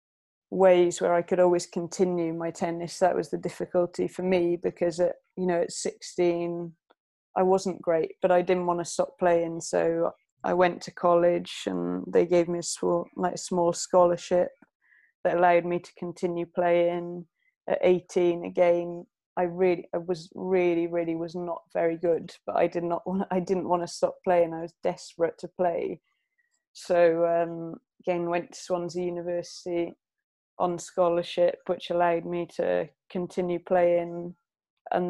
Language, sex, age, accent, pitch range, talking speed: English, female, 20-39, British, 170-180 Hz, 160 wpm